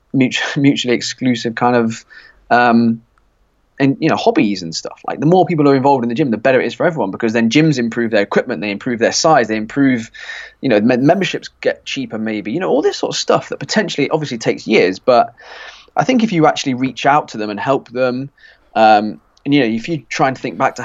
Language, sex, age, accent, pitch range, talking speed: English, male, 20-39, British, 120-155 Hz, 235 wpm